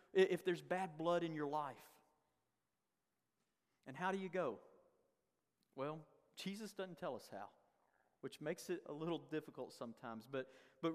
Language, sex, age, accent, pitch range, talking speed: English, male, 40-59, American, 145-180 Hz, 150 wpm